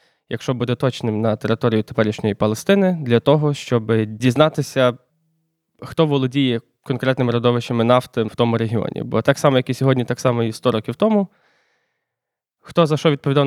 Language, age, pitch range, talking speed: Ukrainian, 20-39, 120-165 Hz, 155 wpm